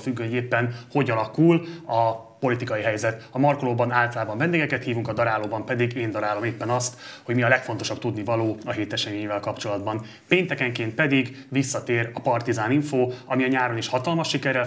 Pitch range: 110-130 Hz